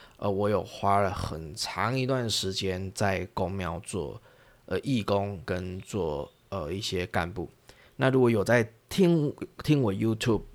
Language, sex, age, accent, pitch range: Chinese, male, 20-39, native, 90-115 Hz